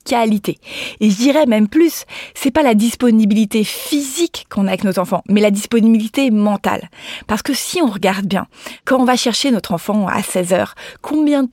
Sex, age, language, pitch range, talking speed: female, 20-39, French, 200-260 Hz, 185 wpm